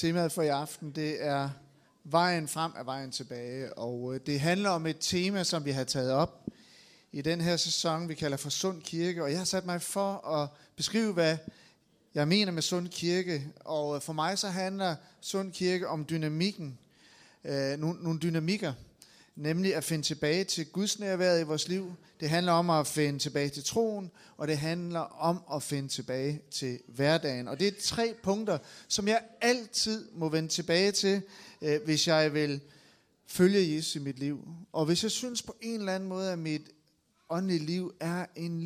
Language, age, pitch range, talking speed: Danish, 30-49, 150-190 Hz, 185 wpm